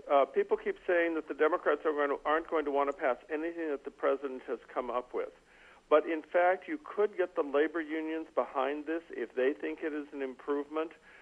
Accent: American